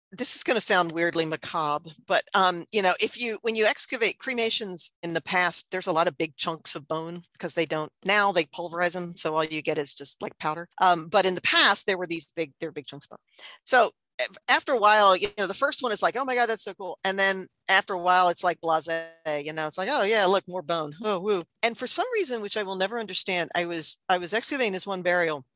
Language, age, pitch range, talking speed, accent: English, 50-69, 165-210 Hz, 260 wpm, American